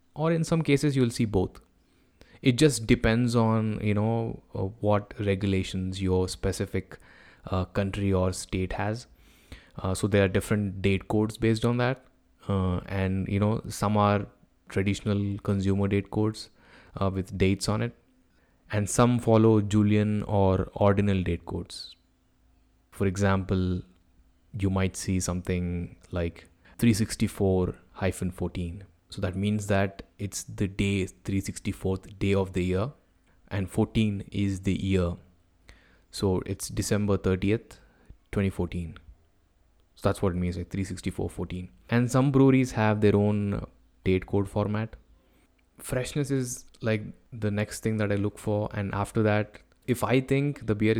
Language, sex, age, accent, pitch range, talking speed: English, male, 20-39, Indian, 95-110 Hz, 140 wpm